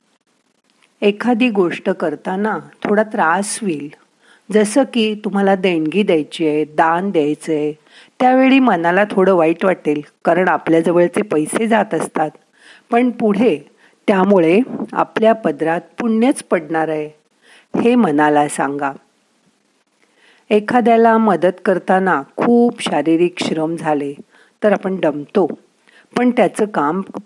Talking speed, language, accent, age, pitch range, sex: 110 wpm, Marathi, native, 50-69, 170-230 Hz, female